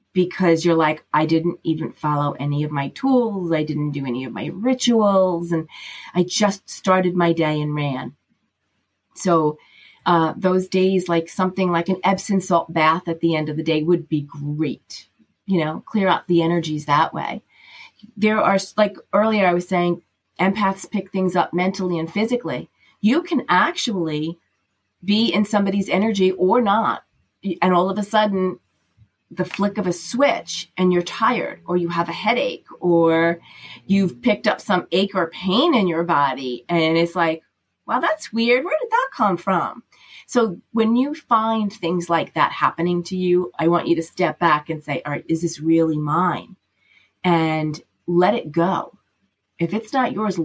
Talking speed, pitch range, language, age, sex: 175 wpm, 160-195 Hz, English, 30-49, female